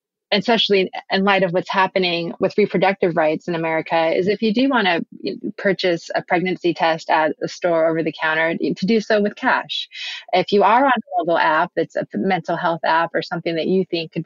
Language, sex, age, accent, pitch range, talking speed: English, female, 30-49, American, 170-205 Hz, 215 wpm